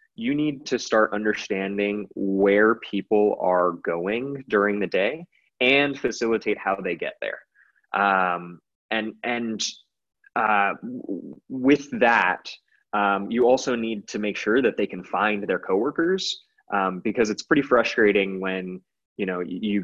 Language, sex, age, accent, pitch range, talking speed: English, male, 20-39, American, 100-140 Hz, 140 wpm